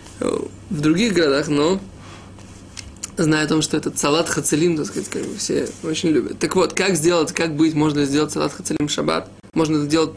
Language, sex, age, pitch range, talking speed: Russian, male, 20-39, 105-165 Hz, 185 wpm